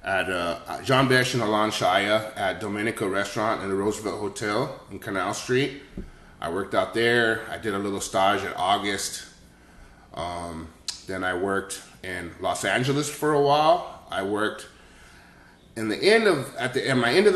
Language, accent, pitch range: English, American, 100-125 Hz